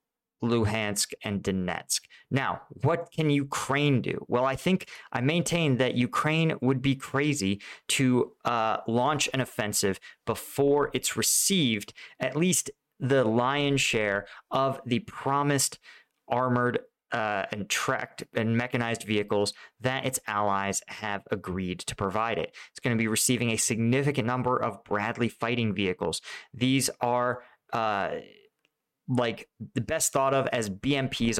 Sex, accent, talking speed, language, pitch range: male, American, 135 wpm, English, 110-140 Hz